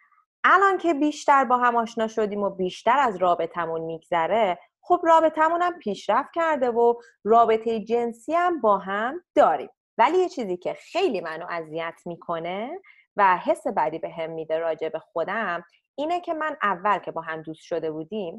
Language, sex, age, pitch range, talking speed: Persian, female, 30-49, 180-305 Hz, 165 wpm